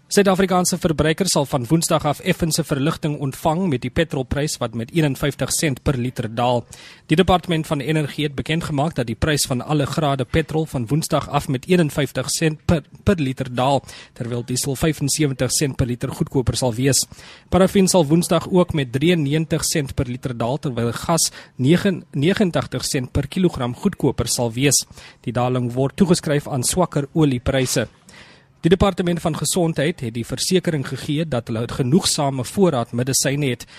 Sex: male